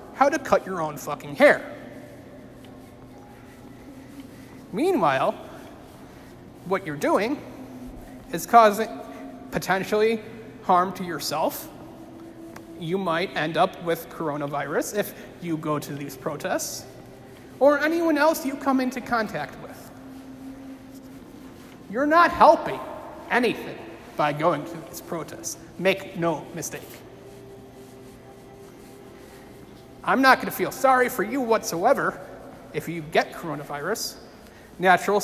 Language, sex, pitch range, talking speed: English, male, 155-250 Hz, 105 wpm